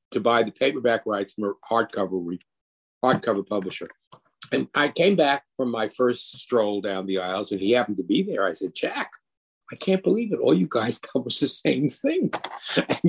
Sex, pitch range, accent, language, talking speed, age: male, 95-145 Hz, American, English, 195 wpm, 50-69